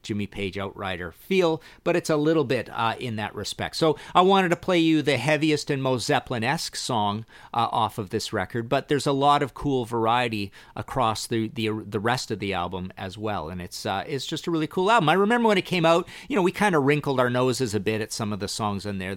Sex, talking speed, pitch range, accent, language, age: male, 245 wpm, 105-150 Hz, American, English, 50-69